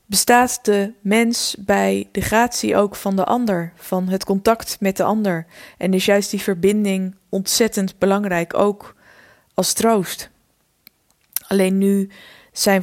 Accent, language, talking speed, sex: Dutch, Dutch, 135 wpm, female